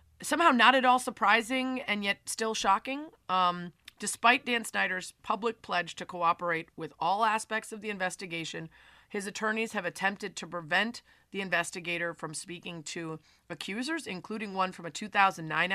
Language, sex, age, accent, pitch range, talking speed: English, female, 30-49, American, 170-215 Hz, 150 wpm